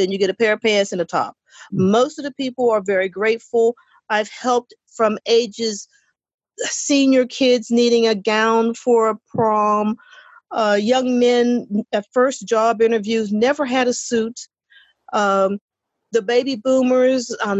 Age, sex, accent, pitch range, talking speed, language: 40-59, female, American, 200-255 Hz, 155 wpm, English